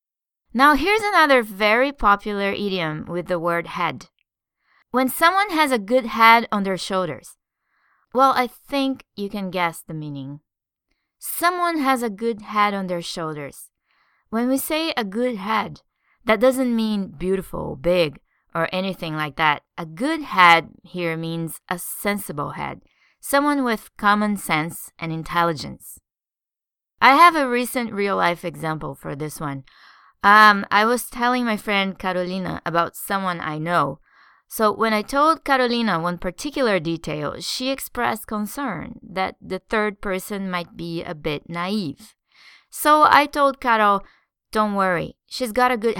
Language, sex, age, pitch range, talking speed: English, female, 20-39, 175-245 Hz, 150 wpm